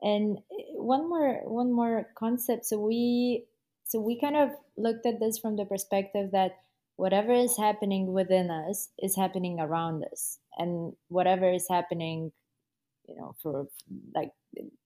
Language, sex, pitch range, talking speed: English, female, 160-210 Hz, 145 wpm